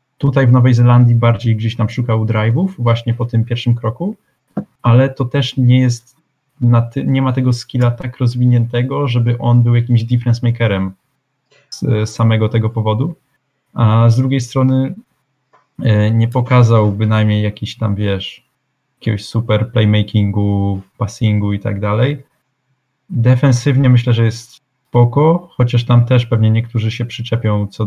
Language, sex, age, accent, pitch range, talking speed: Polish, male, 20-39, native, 110-130 Hz, 140 wpm